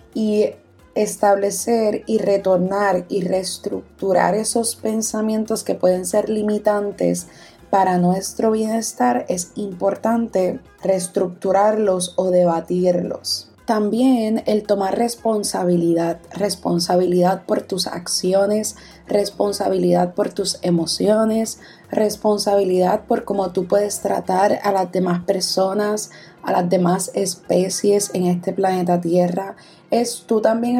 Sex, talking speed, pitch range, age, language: female, 105 wpm, 185-215 Hz, 20-39, Spanish